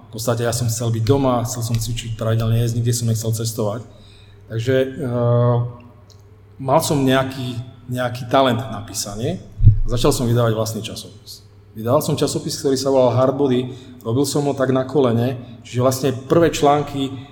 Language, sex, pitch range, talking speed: Czech, male, 110-125 Hz, 165 wpm